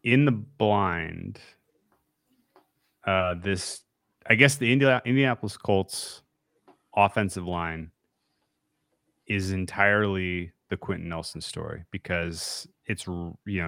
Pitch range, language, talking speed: 80-100 Hz, English, 90 wpm